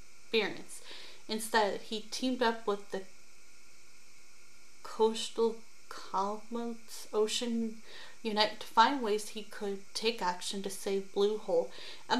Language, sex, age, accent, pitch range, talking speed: English, female, 30-49, American, 200-235 Hz, 115 wpm